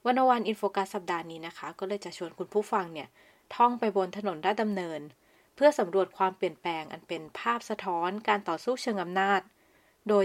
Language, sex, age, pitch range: Thai, female, 20-39, 175-210 Hz